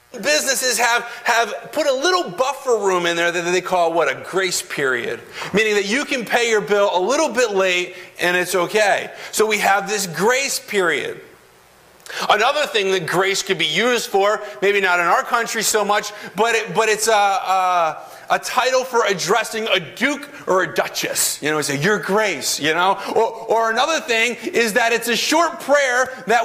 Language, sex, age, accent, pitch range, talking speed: English, male, 40-59, American, 190-270 Hz, 195 wpm